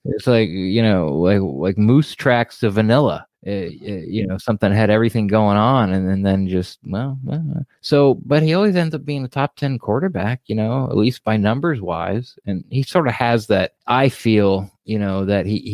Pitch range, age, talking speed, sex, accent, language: 95-115 Hz, 20-39, 205 wpm, male, American, English